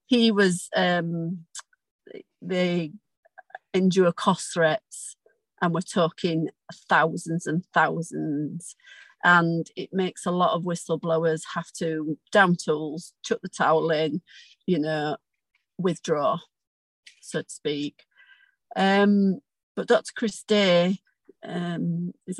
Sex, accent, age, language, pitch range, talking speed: female, British, 40-59, English, 170-200 Hz, 110 wpm